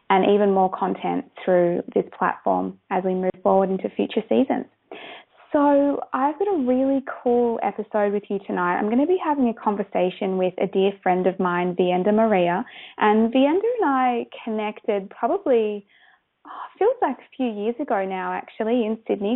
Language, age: English, 20-39